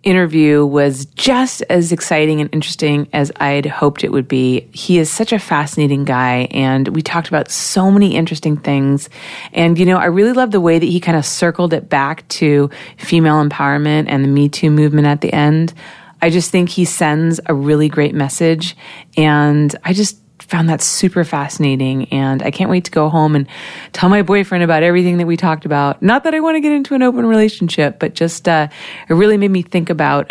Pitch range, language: 145-180 Hz, English